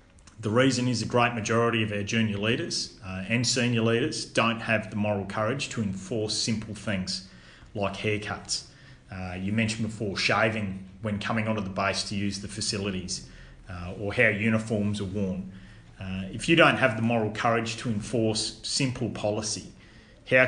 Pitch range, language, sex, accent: 100-115 Hz, English, male, Australian